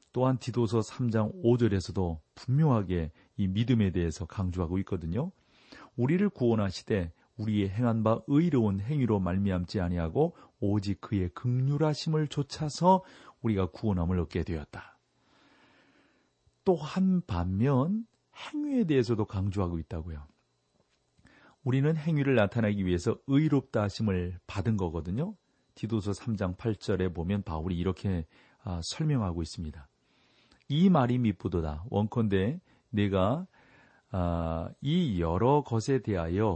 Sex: male